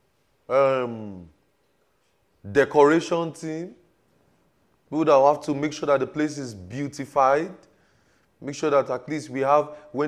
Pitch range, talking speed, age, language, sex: 130-155 Hz, 130 wpm, 30-49, English, male